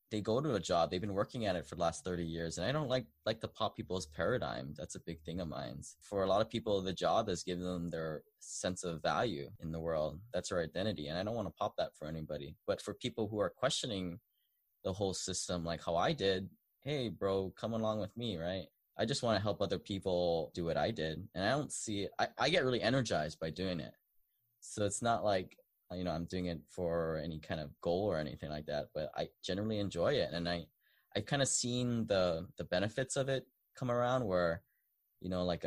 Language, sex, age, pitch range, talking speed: English, male, 20-39, 85-110 Hz, 240 wpm